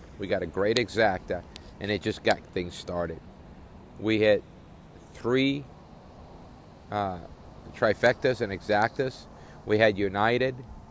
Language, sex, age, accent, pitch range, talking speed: English, male, 50-69, American, 100-125 Hz, 115 wpm